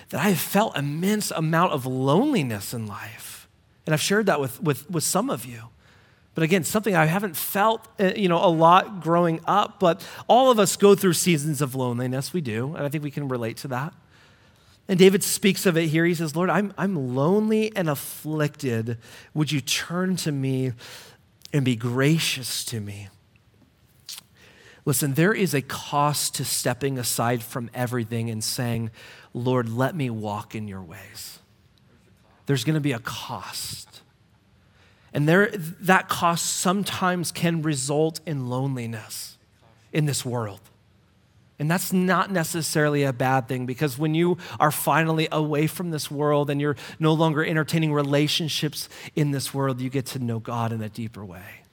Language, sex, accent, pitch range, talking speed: English, male, American, 120-165 Hz, 170 wpm